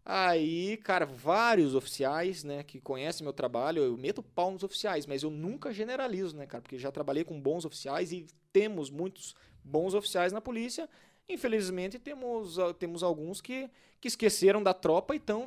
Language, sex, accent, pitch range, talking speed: Portuguese, male, Brazilian, 150-210 Hz, 170 wpm